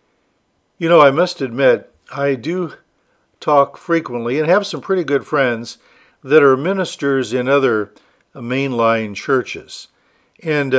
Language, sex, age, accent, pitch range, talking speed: English, male, 50-69, American, 120-155 Hz, 130 wpm